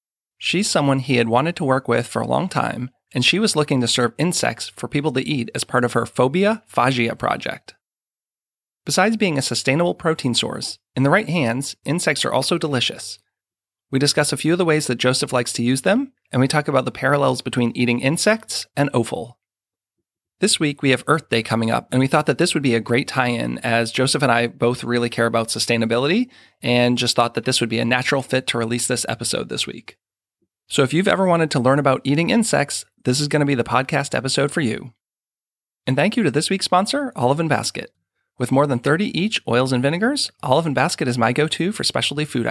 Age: 30-49